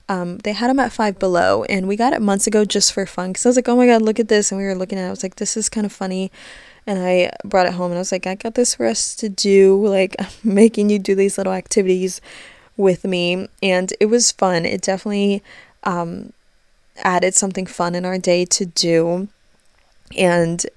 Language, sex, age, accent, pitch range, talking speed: English, female, 20-39, American, 180-210 Hz, 235 wpm